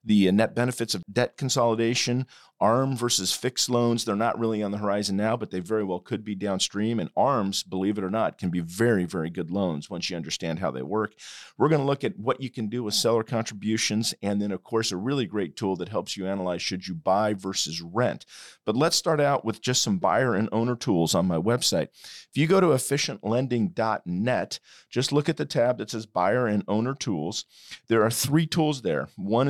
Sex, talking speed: male, 220 wpm